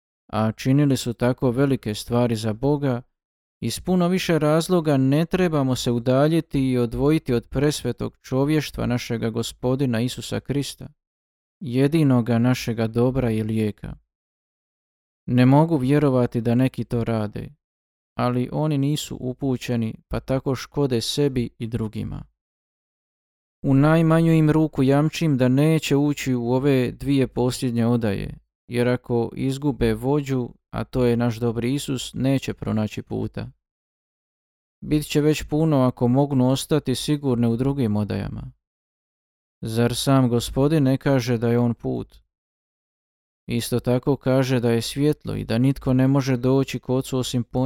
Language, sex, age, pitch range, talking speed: Croatian, male, 20-39, 115-140 Hz, 135 wpm